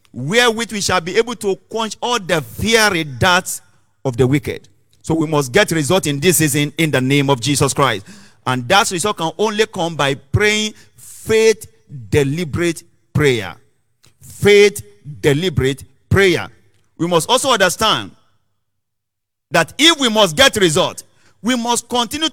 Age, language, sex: 50-69, English, male